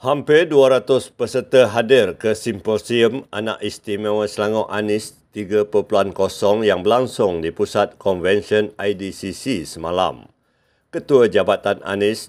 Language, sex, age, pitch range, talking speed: Malay, male, 50-69, 95-115 Hz, 105 wpm